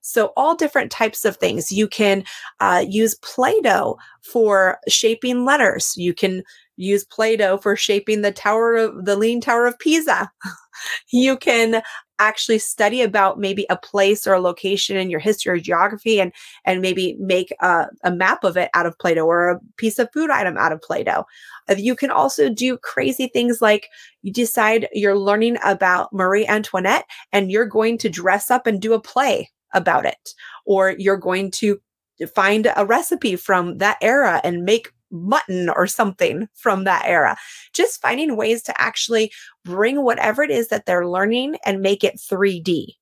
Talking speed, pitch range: 180 wpm, 190-230 Hz